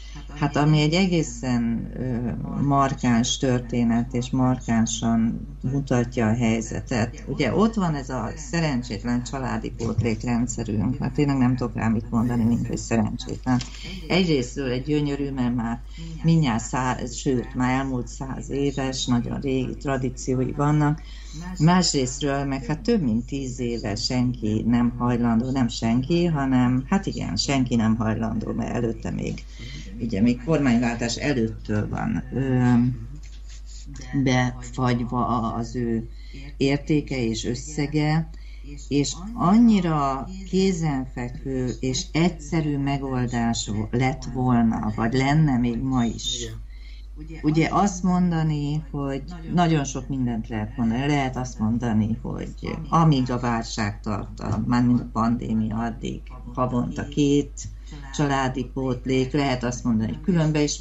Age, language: 50-69, Hungarian